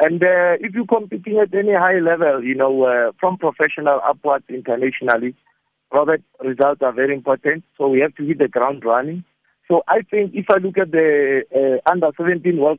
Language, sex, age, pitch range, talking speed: English, male, 50-69, 125-150 Hz, 190 wpm